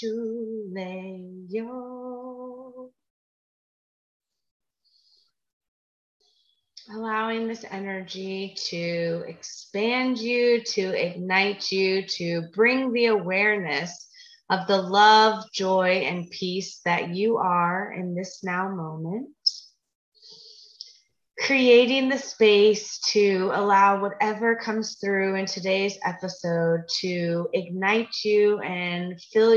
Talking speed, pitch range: 85 wpm, 185-230 Hz